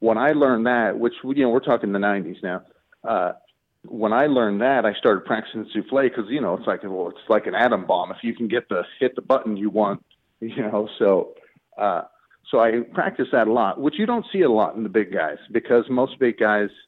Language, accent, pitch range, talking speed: English, American, 100-130 Hz, 235 wpm